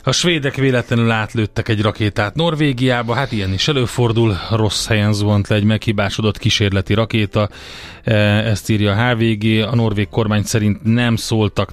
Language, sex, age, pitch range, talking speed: Hungarian, male, 30-49, 105-120 Hz, 150 wpm